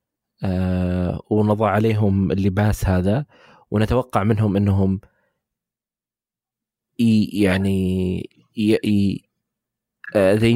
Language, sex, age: Arabic, male, 20-39